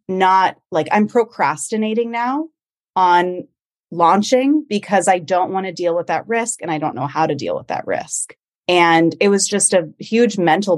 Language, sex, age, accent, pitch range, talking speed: English, female, 30-49, American, 165-210 Hz, 185 wpm